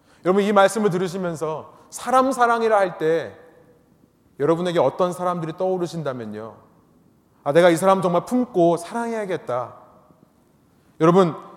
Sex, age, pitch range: male, 30-49, 145-215 Hz